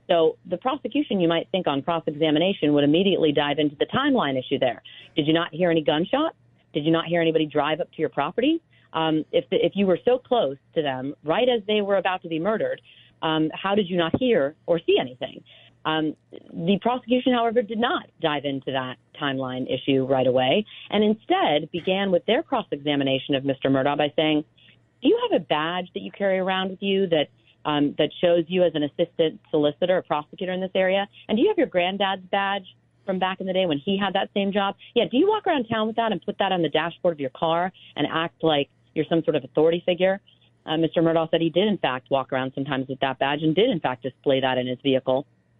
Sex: female